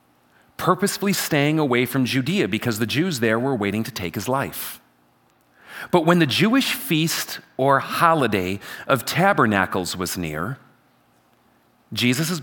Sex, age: male, 40-59